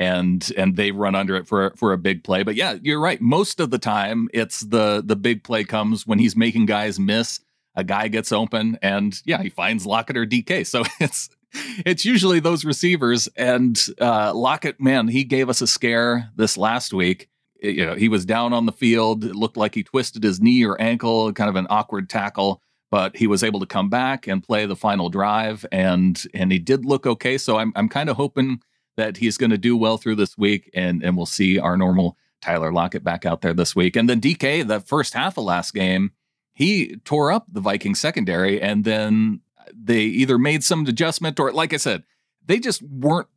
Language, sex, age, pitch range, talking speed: English, male, 40-59, 100-130 Hz, 215 wpm